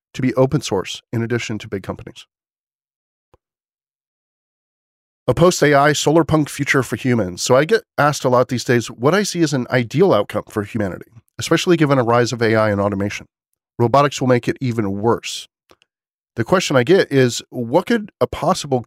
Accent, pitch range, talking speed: American, 110-140 Hz, 180 wpm